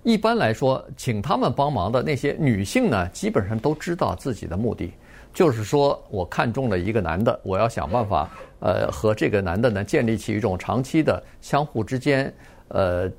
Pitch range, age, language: 105-145 Hz, 50-69, Chinese